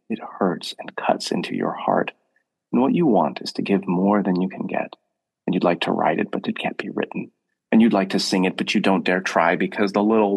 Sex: male